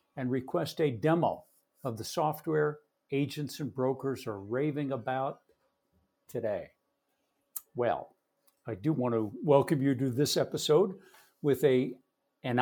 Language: English